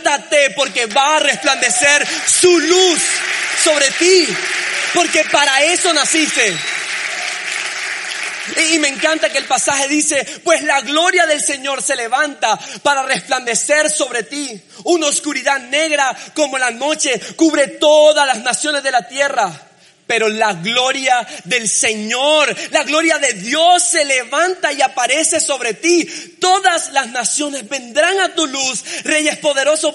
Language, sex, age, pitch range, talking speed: Spanish, male, 30-49, 255-310 Hz, 135 wpm